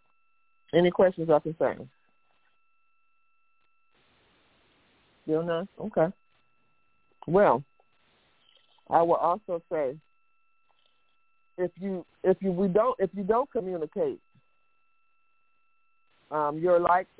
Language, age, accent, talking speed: English, 50-69, American, 90 wpm